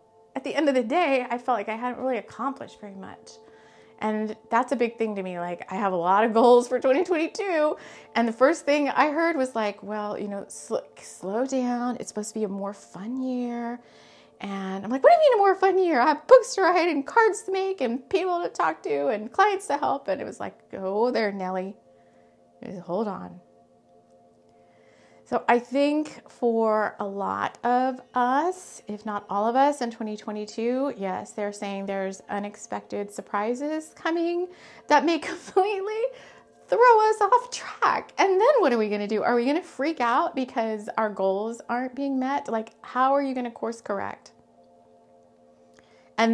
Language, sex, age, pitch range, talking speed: English, female, 30-49, 200-280 Hz, 190 wpm